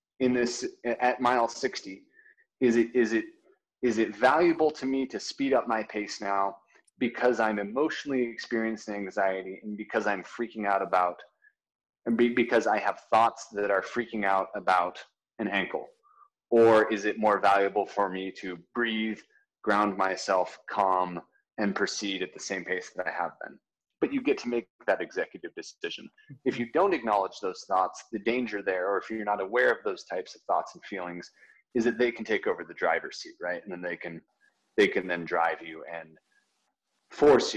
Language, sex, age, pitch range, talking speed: English, male, 20-39, 95-125 Hz, 180 wpm